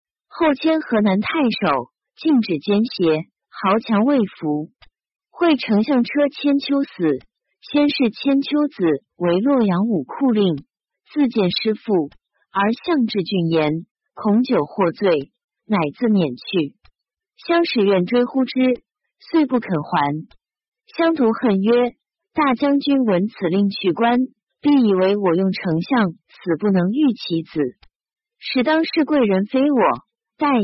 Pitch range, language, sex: 185-270 Hz, Chinese, female